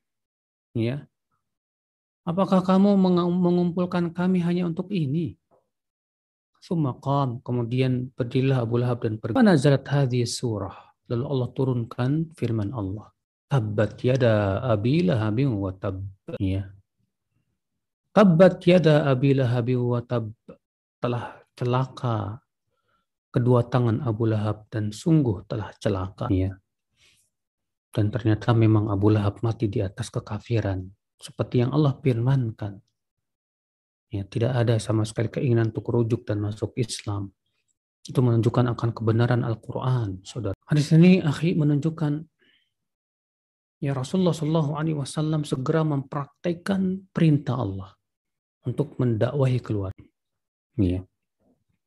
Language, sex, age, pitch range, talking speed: Indonesian, male, 40-59, 110-145 Hz, 105 wpm